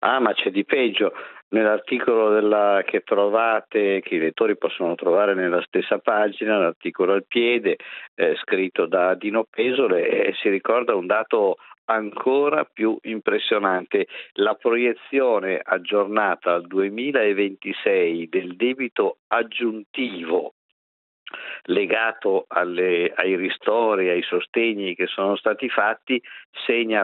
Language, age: Italian, 50-69